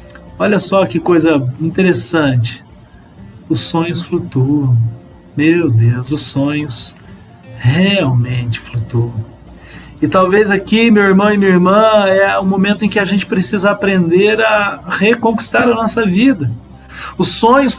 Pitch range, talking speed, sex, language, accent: 190-255 Hz, 130 wpm, male, Portuguese, Brazilian